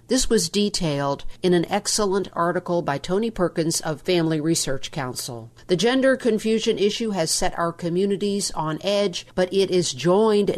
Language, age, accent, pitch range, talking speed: English, 50-69, American, 160-210 Hz, 160 wpm